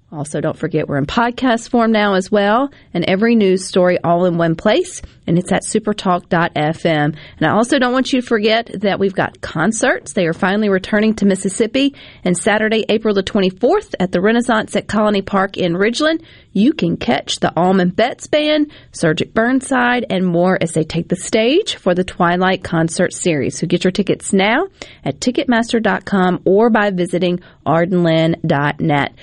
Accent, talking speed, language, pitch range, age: American, 175 wpm, English, 175-230 Hz, 40-59